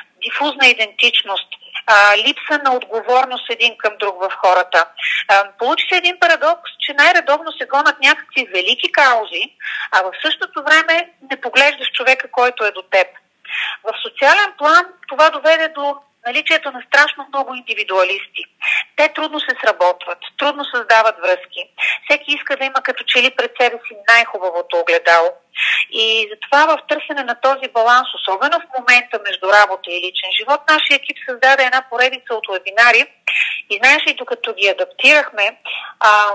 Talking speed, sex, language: 150 wpm, female, Bulgarian